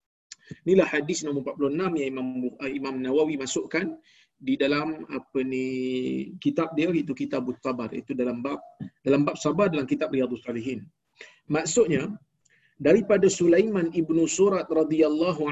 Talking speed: 135 wpm